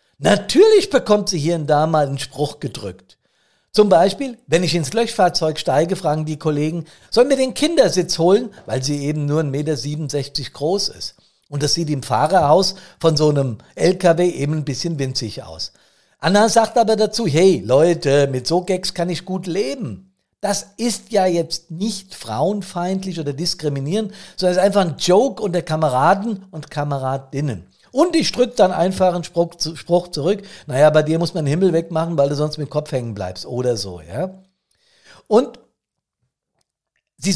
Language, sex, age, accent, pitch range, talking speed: German, male, 50-69, German, 145-190 Hz, 170 wpm